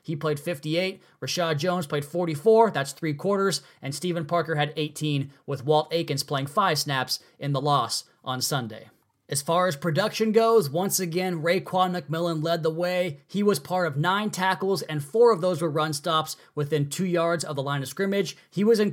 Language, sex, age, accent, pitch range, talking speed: English, male, 20-39, American, 145-185 Hz, 195 wpm